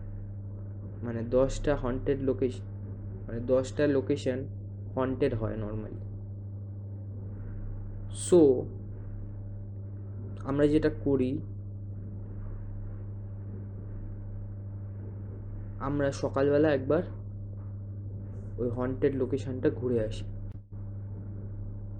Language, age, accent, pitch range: Bengali, 20-39, native, 100-130 Hz